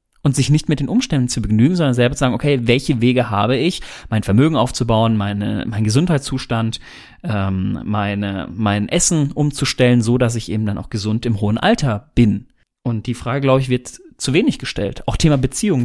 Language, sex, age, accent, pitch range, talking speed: German, male, 30-49, German, 120-150 Hz, 195 wpm